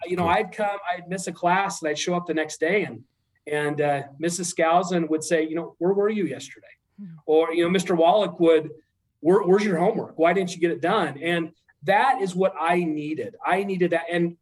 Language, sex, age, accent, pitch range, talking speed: English, male, 40-59, American, 155-185 Hz, 225 wpm